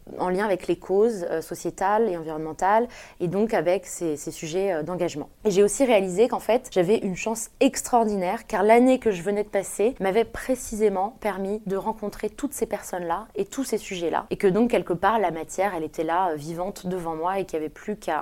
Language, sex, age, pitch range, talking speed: French, female, 20-39, 180-235 Hz, 215 wpm